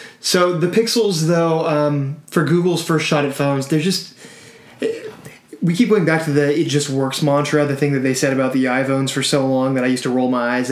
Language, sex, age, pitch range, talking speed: English, male, 20-39, 130-150 Hz, 220 wpm